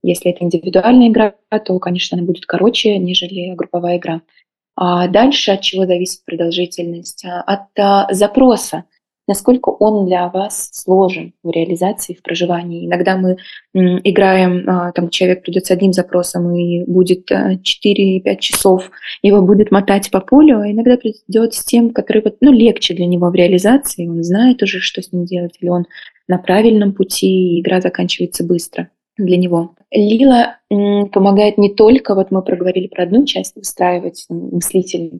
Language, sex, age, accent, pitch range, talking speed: Russian, female, 20-39, native, 175-205 Hz, 160 wpm